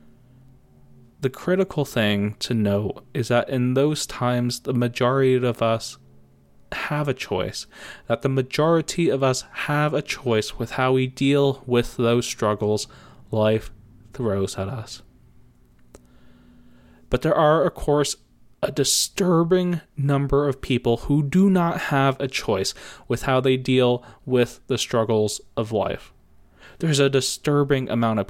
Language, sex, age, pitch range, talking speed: English, male, 20-39, 115-155 Hz, 140 wpm